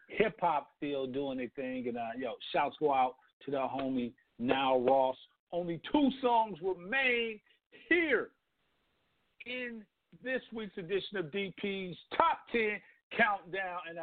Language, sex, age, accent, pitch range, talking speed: English, male, 50-69, American, 195-265 Hz, 135 wpm